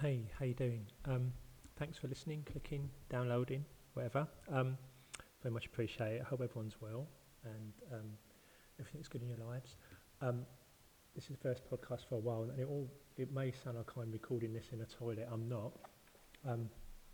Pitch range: 115-130 Hz